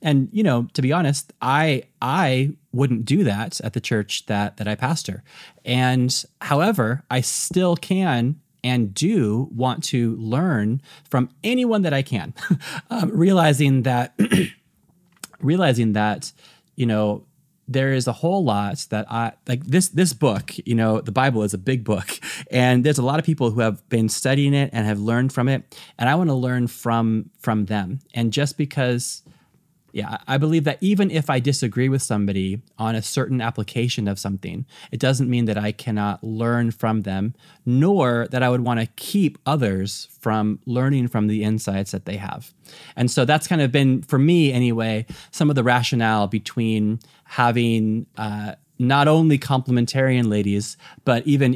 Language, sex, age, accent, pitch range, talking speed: English, male, 30-49, American, 110-145 Hz, 175 wpm